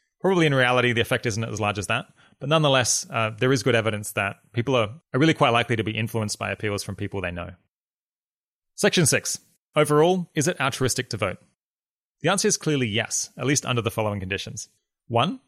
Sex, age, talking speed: male, 30-49, 205 wpm